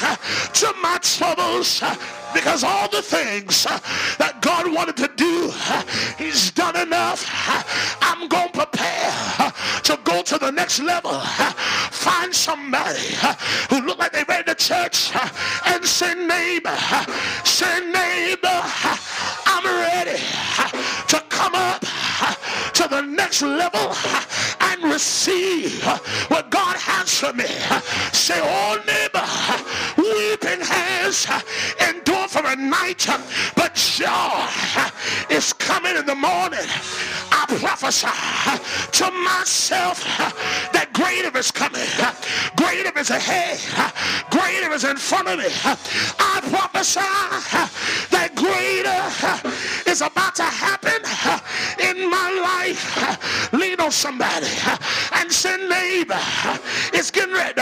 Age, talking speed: 40-59, 110 wpm